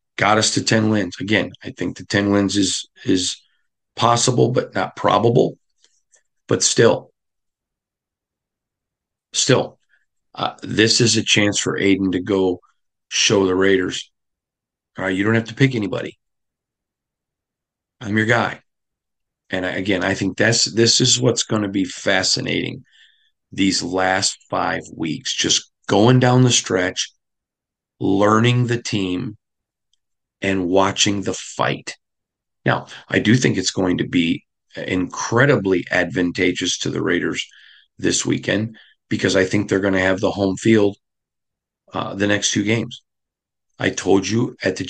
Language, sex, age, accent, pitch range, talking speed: English, male, 40-59, American, 95-110 Hz, 140 wpm